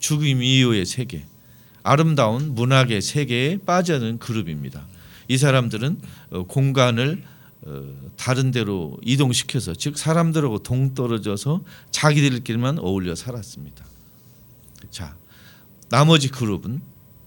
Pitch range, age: 105-145 Hz, 40-59